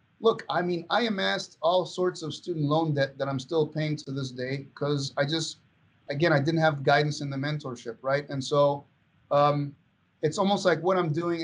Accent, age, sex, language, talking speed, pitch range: American, 30-49, male, English, 205 wpm, 140-160 Hz